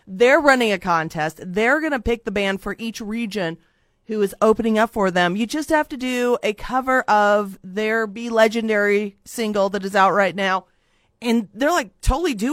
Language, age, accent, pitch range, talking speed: English, 40-59, American, 190-235 Hz, 195 wpm